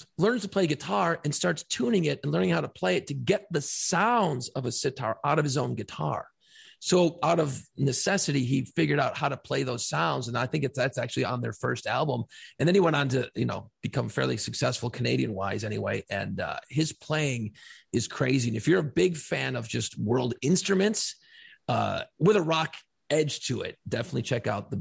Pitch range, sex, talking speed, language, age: 130-200 Hz, male, 215 wpm, English, 40-59